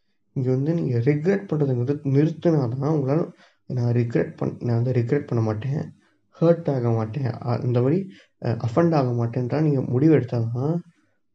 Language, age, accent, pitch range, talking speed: Tamil, 20-39, native, 120-155 Hz, 160 wpm